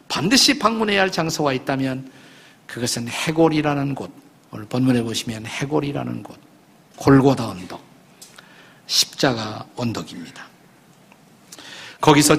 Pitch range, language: 130-175 Hz, Korean